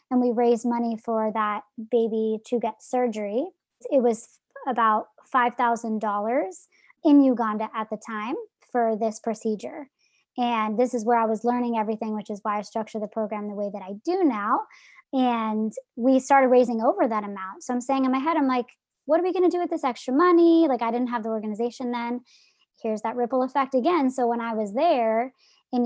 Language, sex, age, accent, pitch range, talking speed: English, male, 20-39, American, 220-265 Hz, 200 wpm